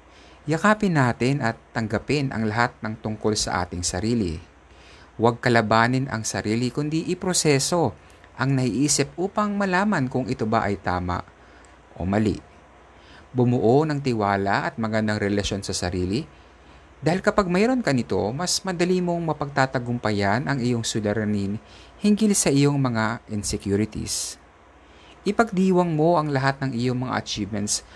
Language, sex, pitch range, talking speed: Filipino, male, 100-150 Hz, 130 wpm